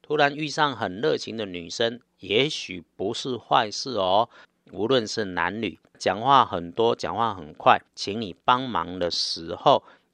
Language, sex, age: Chinese, male, 50-69